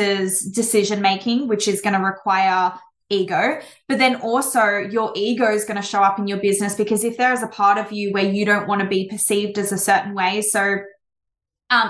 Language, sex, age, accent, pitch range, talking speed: English, female, 20-39, Australian, 200-230 Hz, 205 wpm